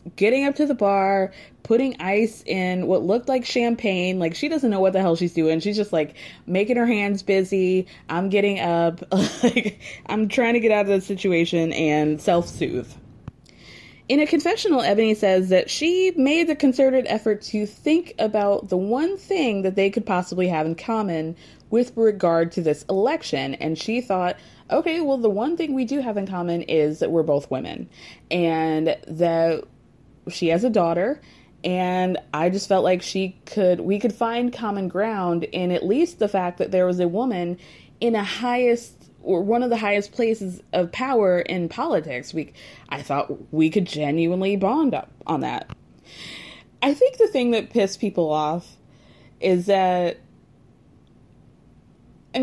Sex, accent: female, American